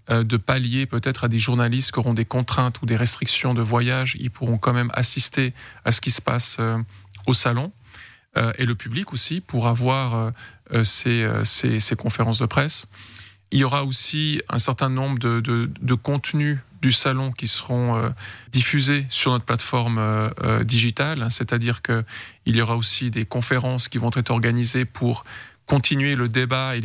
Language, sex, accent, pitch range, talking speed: French, male, French, 115-135 Hz, 165 wpm